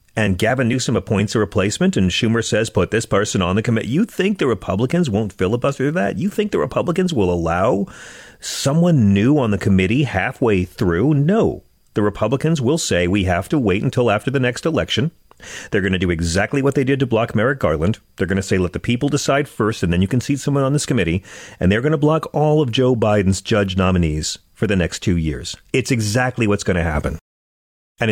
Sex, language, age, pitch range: male, English, 40-59, 105-145 Hz